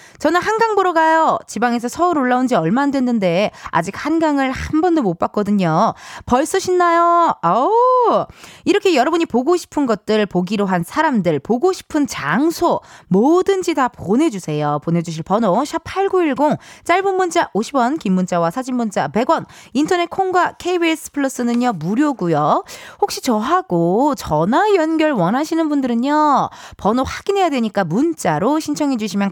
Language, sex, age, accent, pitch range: Korean, female, 20-39, native, 195-330 Hz